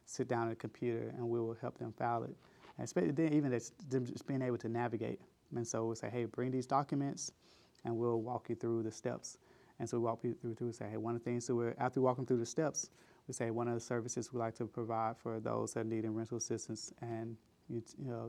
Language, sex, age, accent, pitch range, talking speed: English, male, 30-49, American, 115-125 Hz, 255 wpm